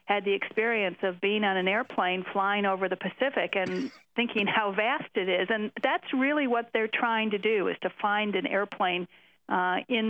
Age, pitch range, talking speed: 50-69, 185-230 Hz, 195 wpm